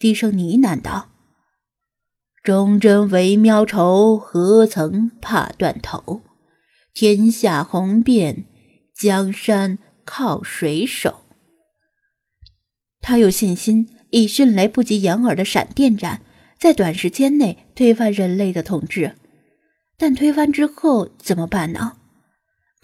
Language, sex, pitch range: Chinese, female, 190-255 Hz